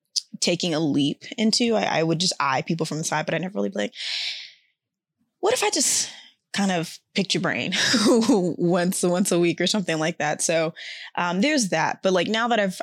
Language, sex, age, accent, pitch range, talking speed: English, female, 20-39, American, 165-195 Hz, 210 wpm